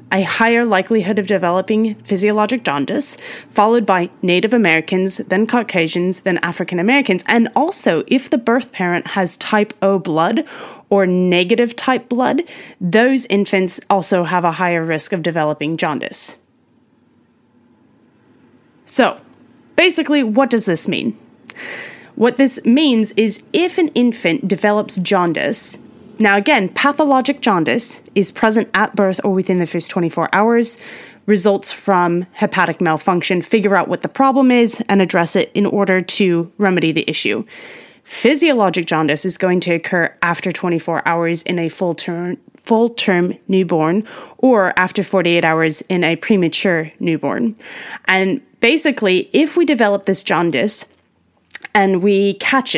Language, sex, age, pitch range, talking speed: English, female, 20-39, 180-230 Hz, 135 wpm